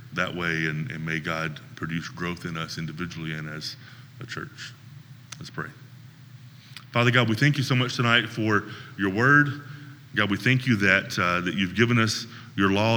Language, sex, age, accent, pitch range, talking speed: English, male, 30-49, American, 95-125 Hz, 185 wpm